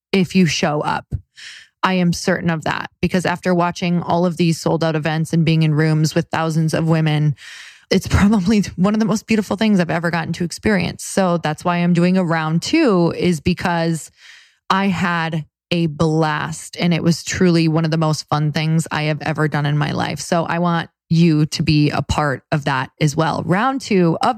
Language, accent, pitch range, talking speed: English, American, 160-185 Hz, 210 wpm